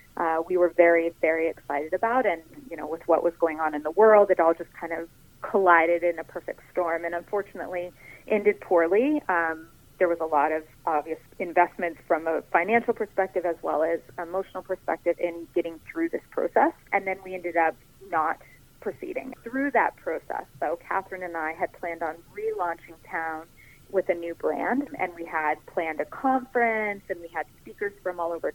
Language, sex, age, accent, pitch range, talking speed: English, female, 30-49, American, 165-195 Hz, 190 wpm